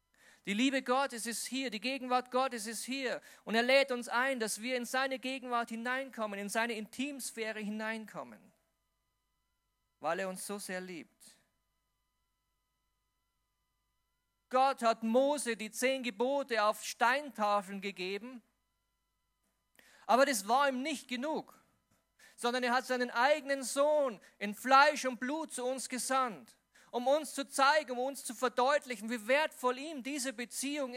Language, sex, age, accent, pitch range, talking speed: German, male, 40-59, German, 220-265 Hz, 140 wpm